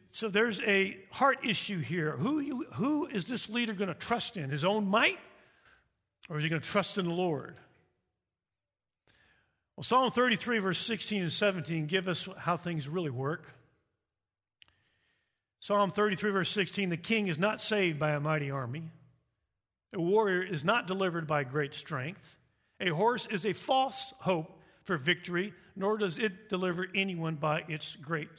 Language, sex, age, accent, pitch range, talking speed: English, male, 50-69, American, 155-215 Hz, 165 wpm